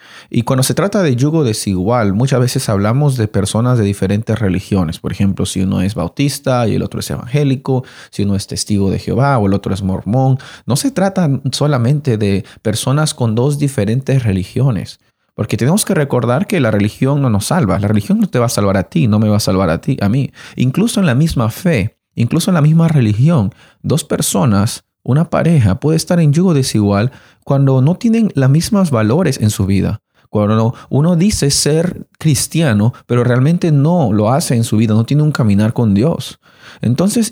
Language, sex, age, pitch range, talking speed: Spanish, male, 30-49, 105-145 Hz, 200 wpm